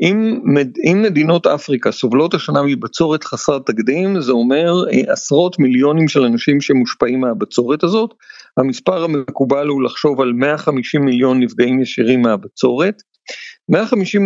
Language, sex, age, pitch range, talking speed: Hebrew, male, 50-69, 135-190 Hz, 120 wpm